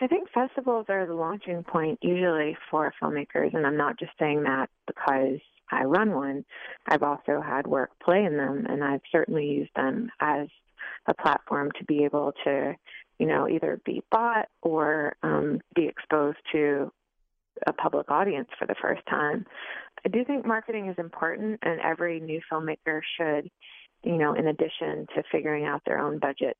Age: 30-49